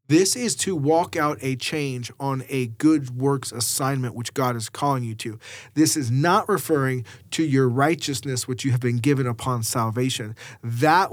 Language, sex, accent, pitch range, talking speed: English, male, American, 125-155 Hz, 180 wpm